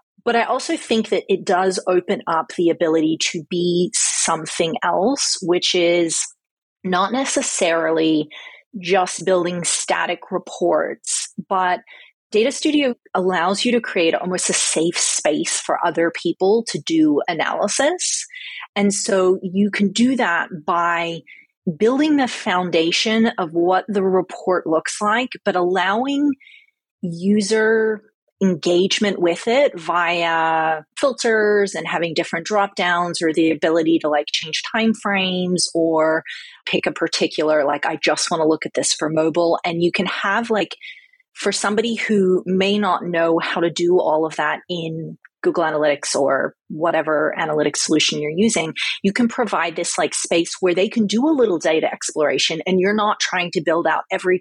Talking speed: 150 wpm